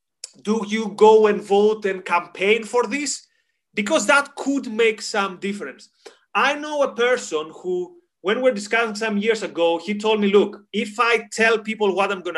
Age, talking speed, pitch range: 30-49, 185 wpm, 195-245 Hz